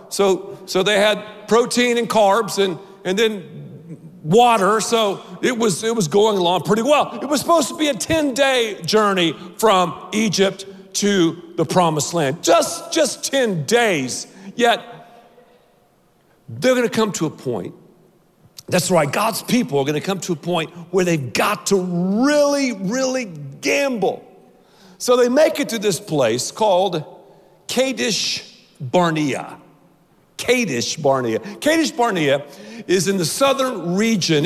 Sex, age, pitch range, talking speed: male, 50-69, 175-230 Hz, 145 wpm